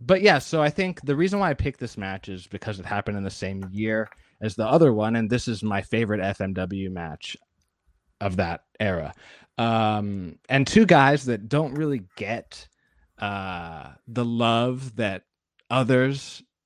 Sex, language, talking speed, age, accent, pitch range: male, English, 170 wpm, 20-39, American, 100-135 Hz